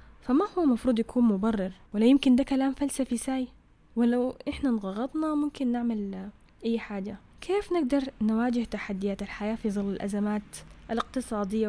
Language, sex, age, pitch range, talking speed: Arabic, female, 10-29, 200-255 Hz, 140 wpm